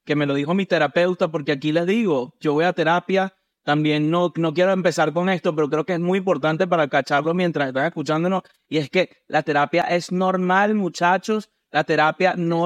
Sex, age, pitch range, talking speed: male, 30-49, 155-185 Hz, 205 wpm